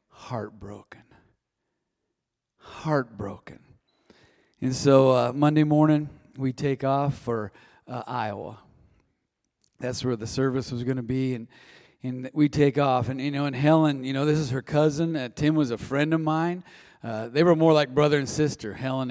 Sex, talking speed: male, 165 wpm